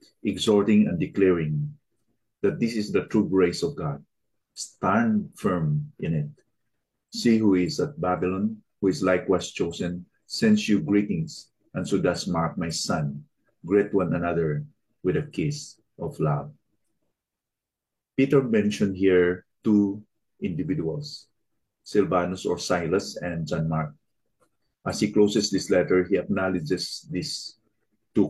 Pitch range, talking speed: 90-115 Hz, 130 wpm